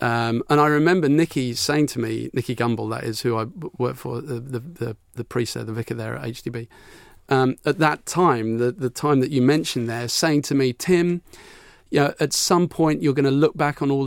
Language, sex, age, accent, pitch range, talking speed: English, male, 40-59, British, 115-150 Hz, 225 wpm